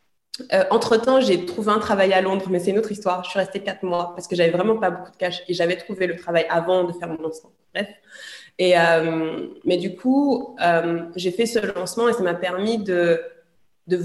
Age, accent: 20-39, French